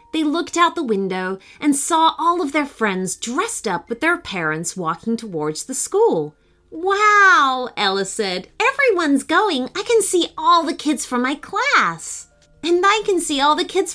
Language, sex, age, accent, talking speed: English, female, 30-49, American, 175 wpm